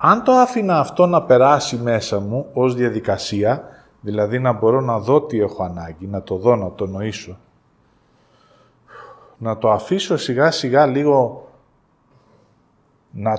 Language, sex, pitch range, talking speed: Greek, male, 110-160 Hz, 140 wpm